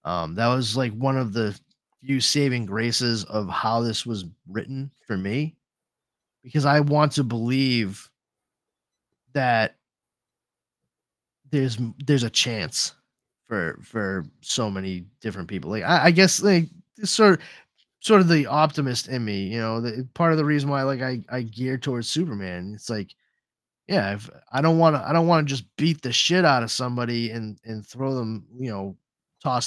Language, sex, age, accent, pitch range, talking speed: English, male, 20-39, American, 110-145 Hz, 175 wpm